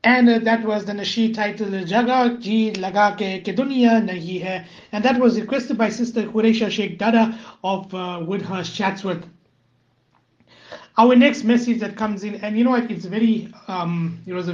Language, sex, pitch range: English, male, 170-200 Hz